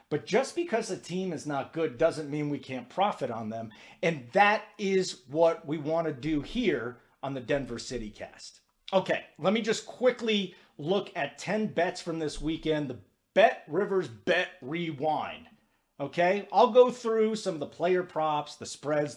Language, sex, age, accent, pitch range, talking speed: English, male, 40-59, American, 145-200 Hz, 180 wpm